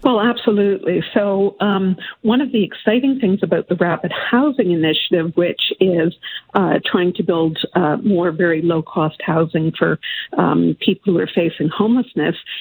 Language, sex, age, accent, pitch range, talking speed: English, female, 50-69, American, 170-210 Hz, 150 wpm